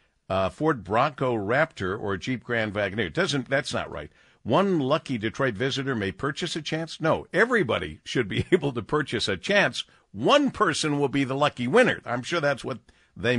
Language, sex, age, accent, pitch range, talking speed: English, male, 50-69, American, 90-135 Hz, 185 wpm